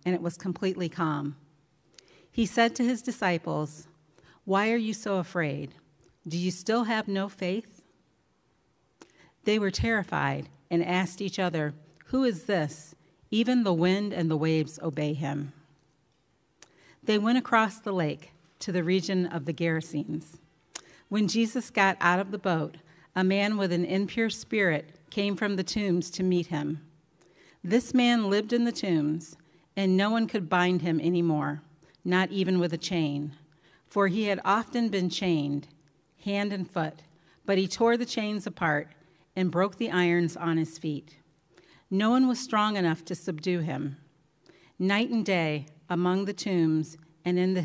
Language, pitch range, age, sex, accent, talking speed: English, 160-200 Hz, 40-59, female, American, 160 wpm